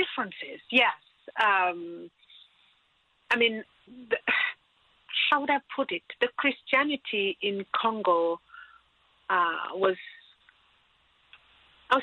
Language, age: English, 40-59